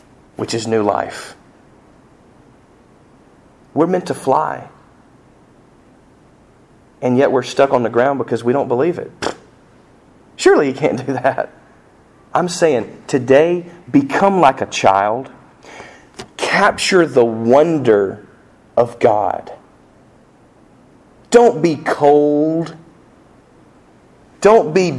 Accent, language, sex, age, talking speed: American, English, male, 40-59, 100 wpm